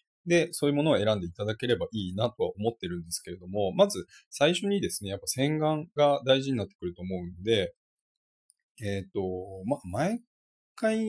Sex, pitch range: male, 95-150 Hz